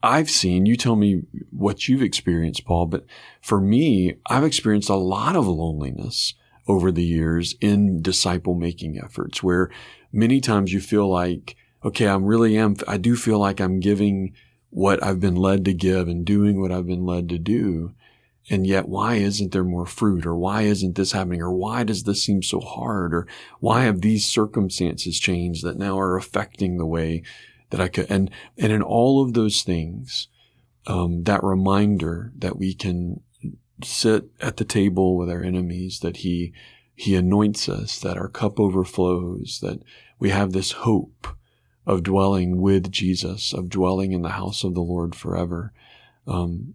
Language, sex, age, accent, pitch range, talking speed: English, male, 40-59, American, 90-105 Hz, 175 wpm